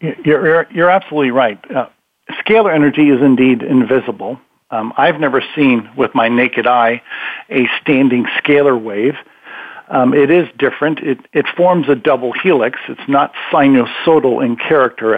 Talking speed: 145 wpm